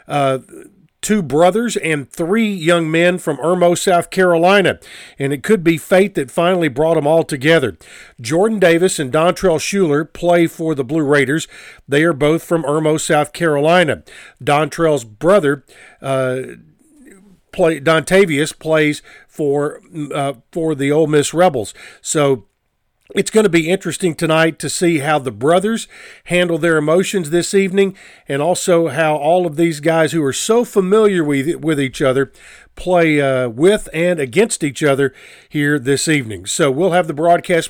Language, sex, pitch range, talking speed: English, male, 145-175 Hz, 160 wpm